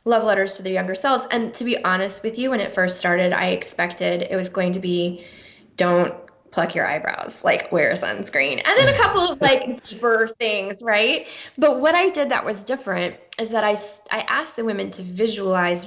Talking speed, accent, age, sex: 210 wpm, American, 20-39, female